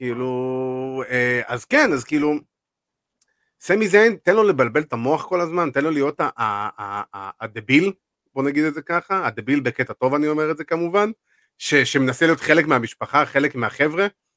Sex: male